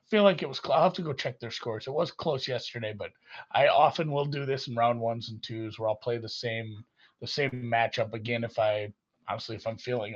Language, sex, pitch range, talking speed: English, male, 120-175 Hz, 240 wpm